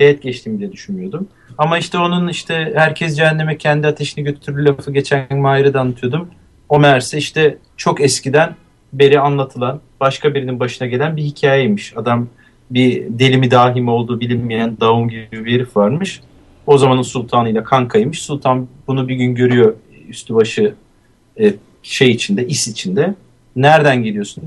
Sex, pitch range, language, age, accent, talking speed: male, 125-165 Hz, Turkish, 40-59, native, 145 wpm